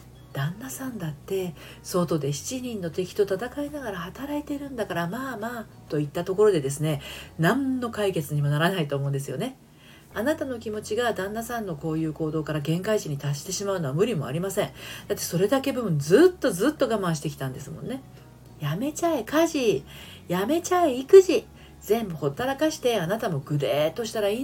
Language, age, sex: Japanese, 40-59, female